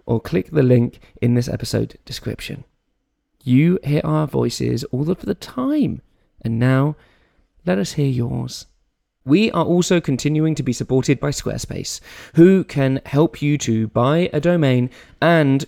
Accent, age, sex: British, 20-39, male